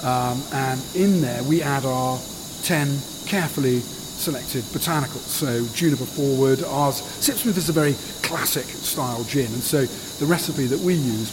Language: English